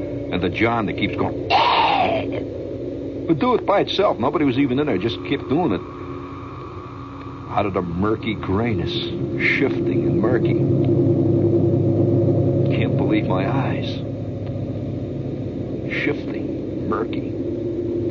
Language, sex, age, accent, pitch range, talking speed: English, male, 60-79, American, 115-130 Hz, 115 wpm